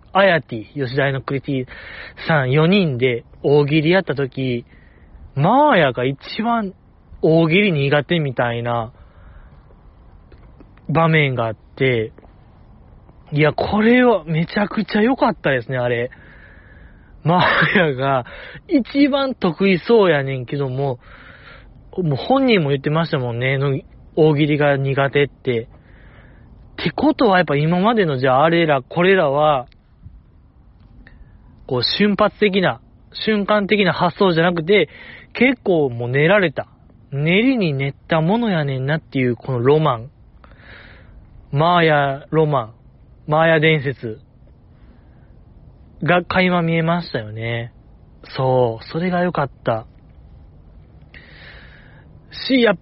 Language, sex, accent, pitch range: Japanese, male, native, 120-175 Hz